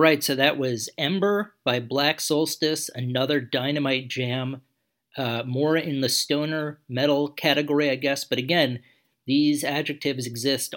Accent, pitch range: American, 120-150 Hz